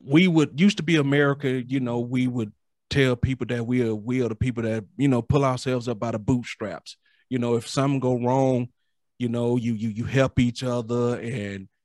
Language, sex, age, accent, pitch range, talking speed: English, male, 30-49, American, 120-155 Hz, 220 wpm